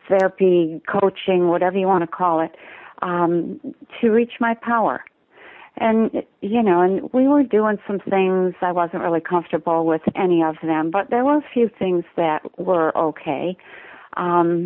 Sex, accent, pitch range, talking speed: female, American, 170-200 Hz, 165 wpm